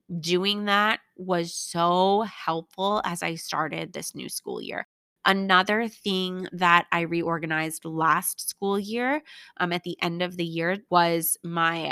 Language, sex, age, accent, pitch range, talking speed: English, female, 20-39, American, 170-210 Hz, 145 wpm